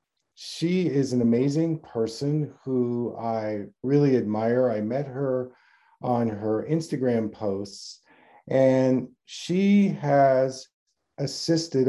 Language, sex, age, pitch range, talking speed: English, male, 50-69, 125-150 Hz, 100 wpm